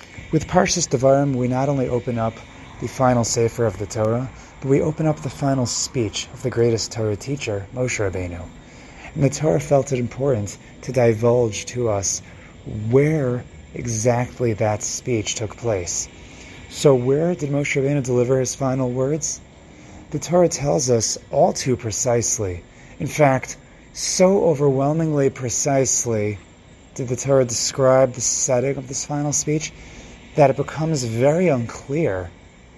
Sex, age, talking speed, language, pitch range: male, 30-49, 145 wpm, English, 115-140 Hz